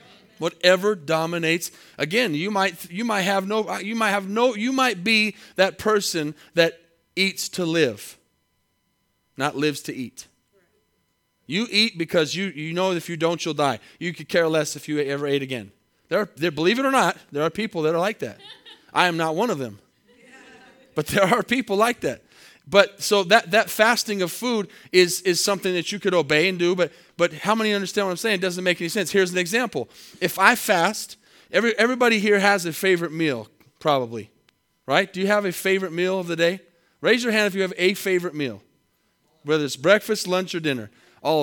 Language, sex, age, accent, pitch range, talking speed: English, male, 30-49, American, 150-205 Hz, 205 wpm